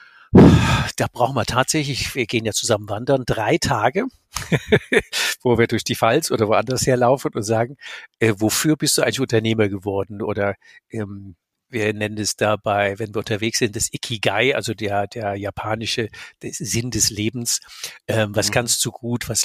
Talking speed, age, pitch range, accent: 160 wpm, 60-79, 110-140 Hz, German